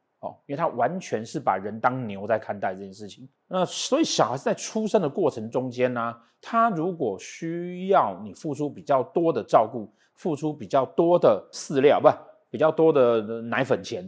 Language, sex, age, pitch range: Chinese, male, 30-49, 120-175 Hz